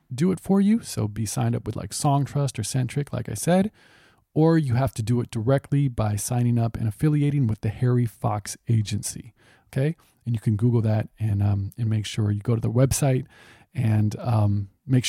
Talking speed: 205 wpm